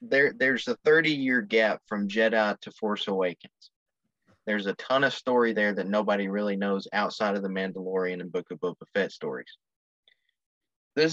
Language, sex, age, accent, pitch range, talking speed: English, male, 30-49, American, 95-115 Hz, 165 wpm